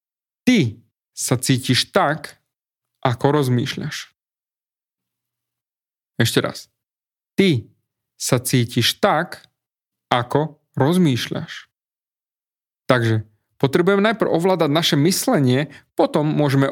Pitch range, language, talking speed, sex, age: 125-160 Hz, Slovak, 80 wpm, male, 30-49